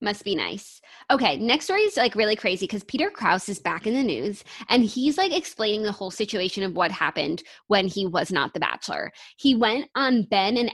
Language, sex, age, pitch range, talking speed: English, female, 20-39, 190-255 Hz, 220 wpm